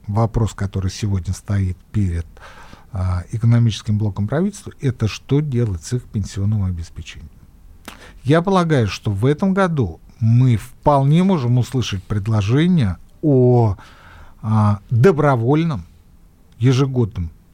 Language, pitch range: Russian, 100-135 Hz